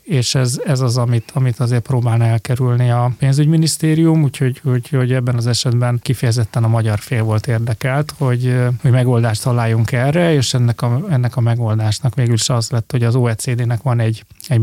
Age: 30-49